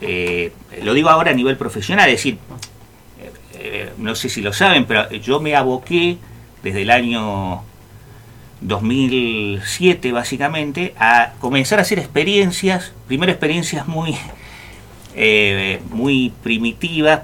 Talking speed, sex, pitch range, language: 120 wpm, male, 110-150 Hz, Spanish